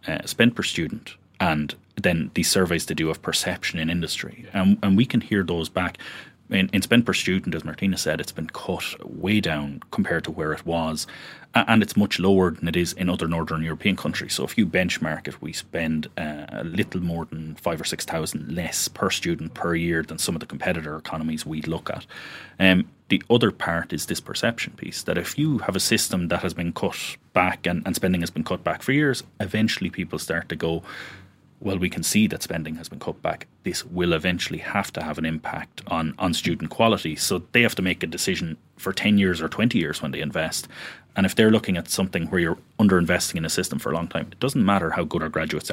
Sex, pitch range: male, 80-100 Hz